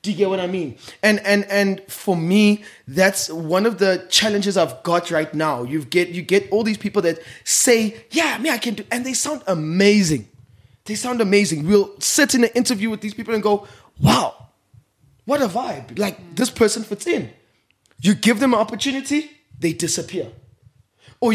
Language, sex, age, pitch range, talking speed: English, male, 20-39, 175-220 Hz, 195 wpm